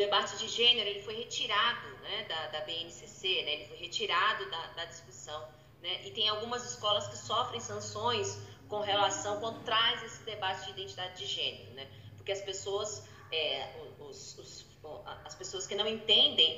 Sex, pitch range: female, 190-245 Hz